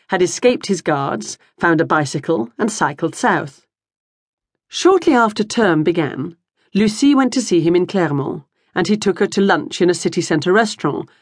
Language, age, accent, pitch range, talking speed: English, 40-59, British, 165-210 Hz, 165 wpm